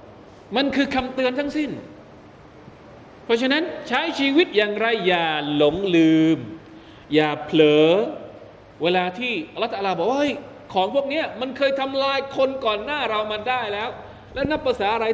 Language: Thai